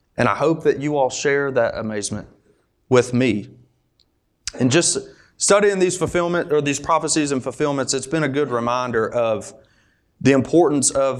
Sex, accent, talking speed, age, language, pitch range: male, American, 160 wpm, 30-49, English, 115-150 Hz